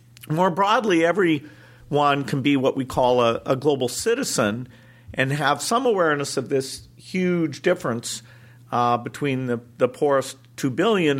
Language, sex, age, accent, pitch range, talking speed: English, male, 50-69, American, 120-150 Hz, 145 wpm